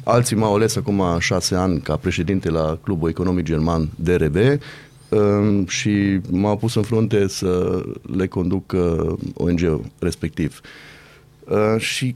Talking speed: 120 wpm